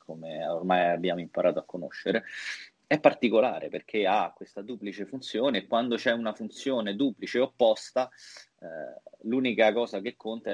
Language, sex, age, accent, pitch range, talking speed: Italian, male, 30-49, native, 95-125 Hz, 140 wpm